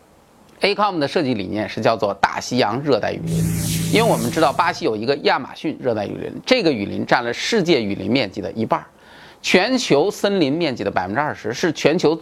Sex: male